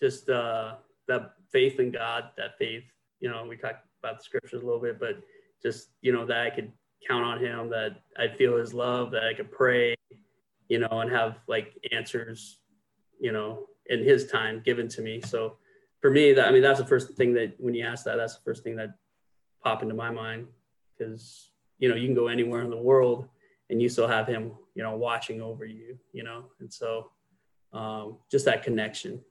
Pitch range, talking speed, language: 115-130 Hz, 210 wpm, English